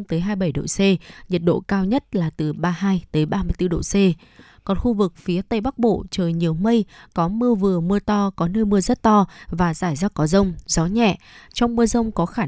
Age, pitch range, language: 20-39, 170-215 Hz, Vietnamese